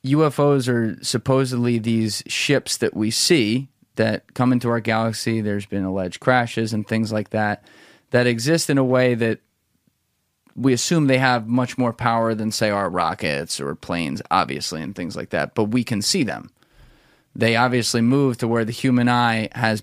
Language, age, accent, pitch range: English, 30-49, American, 110-125 Hz